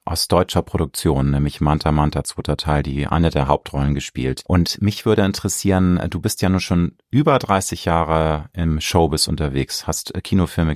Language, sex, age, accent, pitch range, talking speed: German, male, 30-49, German, 80-105 Hz, 165 wpm